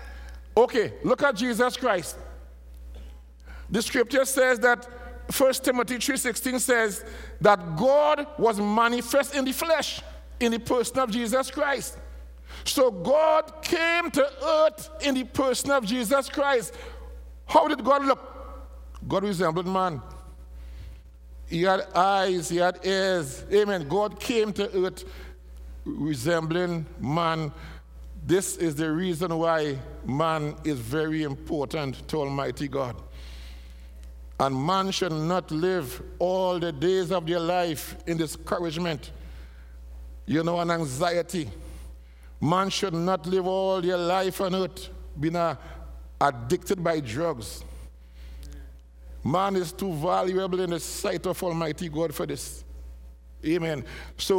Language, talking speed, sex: English, 125 wpm, male